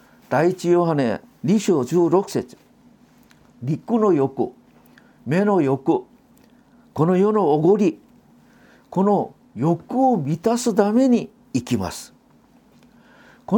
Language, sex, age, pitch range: Japanese, male, 50-69, 155-235 Hz